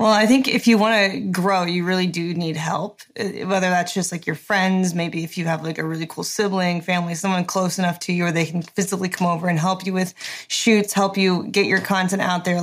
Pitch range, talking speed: 170-195 Hz, 245 wpm